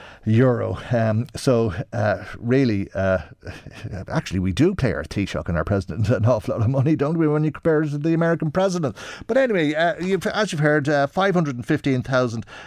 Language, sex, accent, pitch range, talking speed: English, male, Irish, 105-140 Hz, 185 wpm